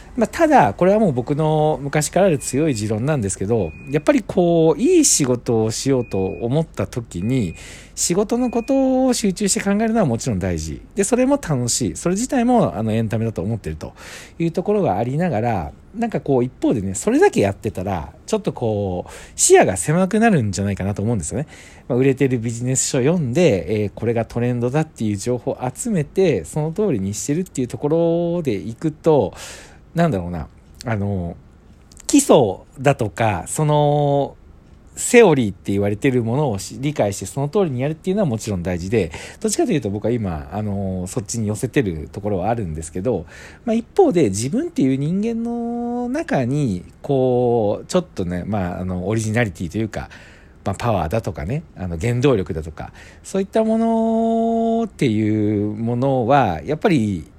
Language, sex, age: Japanese, male, 40-59